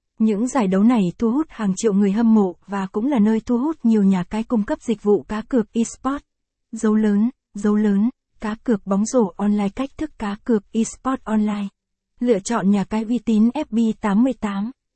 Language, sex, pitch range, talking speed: Vietnamese, female, 205-245 Hz, 200 wpm